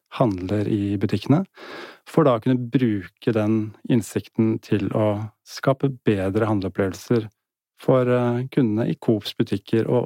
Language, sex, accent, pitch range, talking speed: English, male, Norwegian, 110-130 Hz, 130 wpm